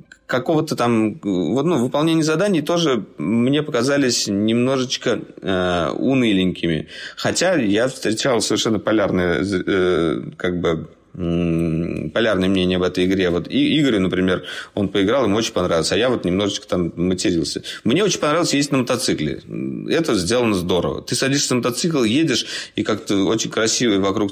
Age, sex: 30-49, male